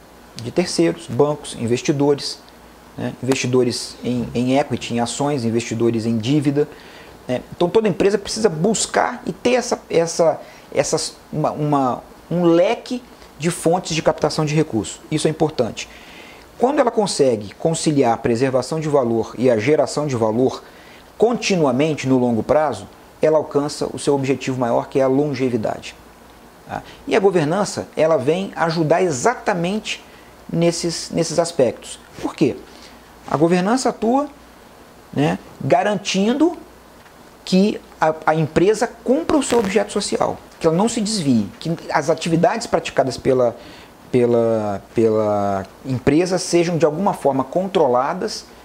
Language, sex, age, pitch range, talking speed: Portuguese, male, 40-59, 135-195 Hz, 135 wpm